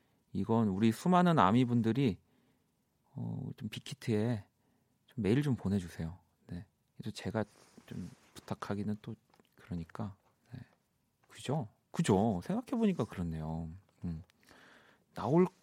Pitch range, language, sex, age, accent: 95-145 Hz, Korean, male, 40-59, native